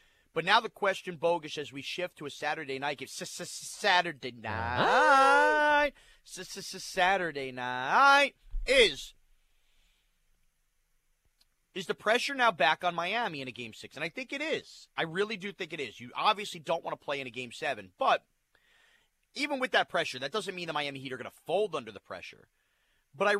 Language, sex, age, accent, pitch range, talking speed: English, male, 30-49, American, 135-205 Hz, 185 wpm